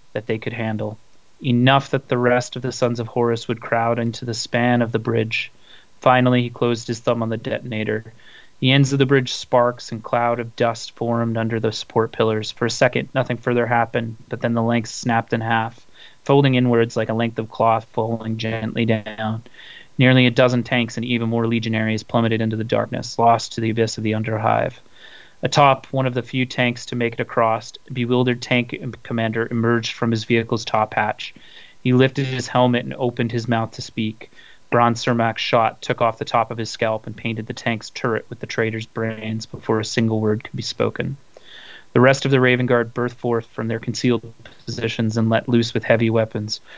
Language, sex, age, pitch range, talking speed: English, male, 30-49, 115-125 Hz, 205 wpm